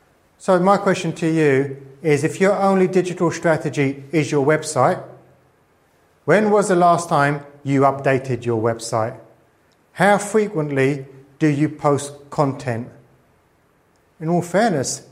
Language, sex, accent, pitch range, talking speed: English, male, British, 135-175 Hz, 125 wpm